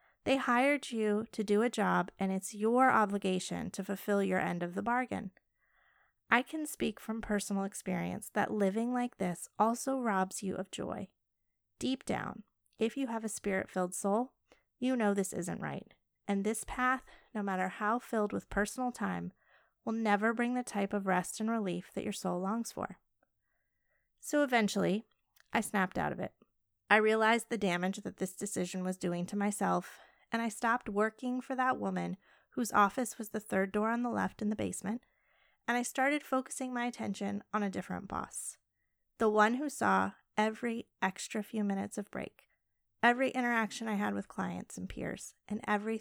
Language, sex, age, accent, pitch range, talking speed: English, female, 30-49, American, 190-235 Hz, 180 wpm